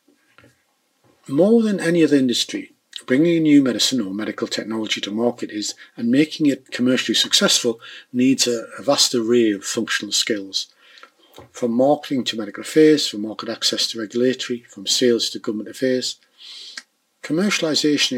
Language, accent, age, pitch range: English, British, 50-69, 115-185 Hz